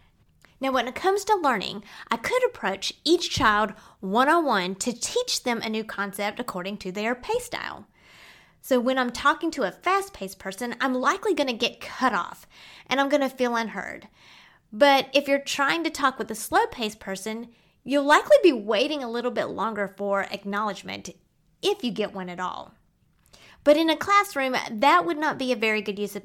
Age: 30-49